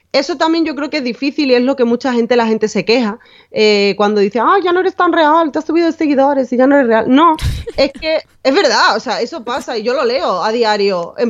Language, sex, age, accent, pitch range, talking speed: Spanish, female, 20-39, Spanish, 200-260 Hz, 275 wpm